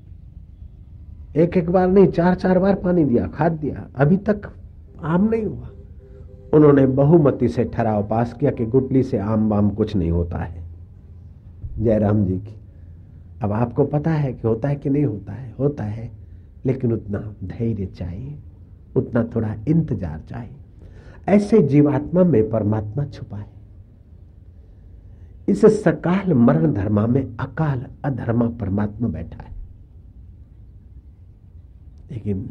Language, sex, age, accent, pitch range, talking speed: Hindi, male, 60-79, native, 90-125 Hz, 135 wpm